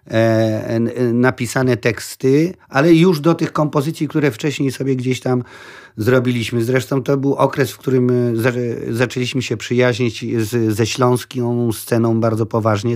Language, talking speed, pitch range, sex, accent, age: Polish, 125 wpm, 115-135 Hz, male, native, 40-59